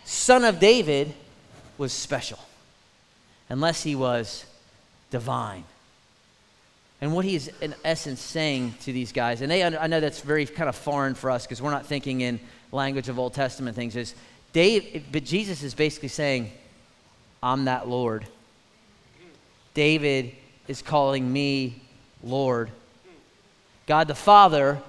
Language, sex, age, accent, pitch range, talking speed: English, male, 30-49, American, 130-160 Hz, 135 wpm